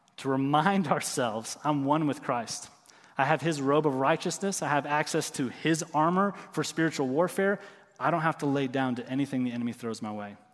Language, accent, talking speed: English, American, 200 wpm